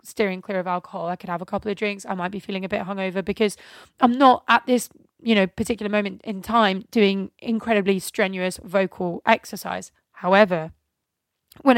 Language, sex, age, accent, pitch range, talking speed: English, female, 20-39, British, 195-230 Hz, 185 wpm